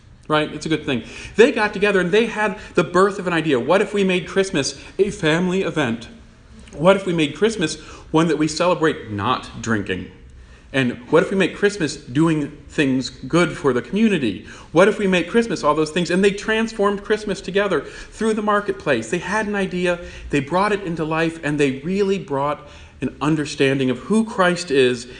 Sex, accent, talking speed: male, American, 195 wpm